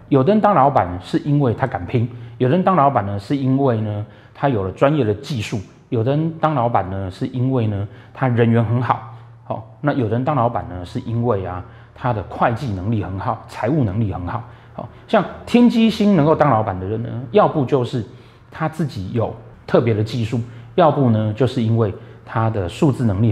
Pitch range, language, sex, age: 105-140 Hz, Chinese, male, 30-49